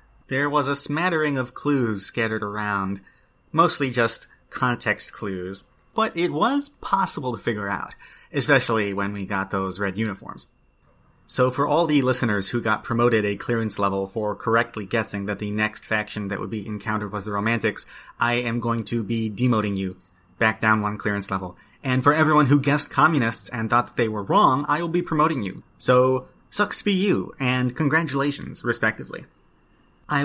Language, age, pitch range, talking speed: English, 30-49, 105-130 Hz, 175 wpm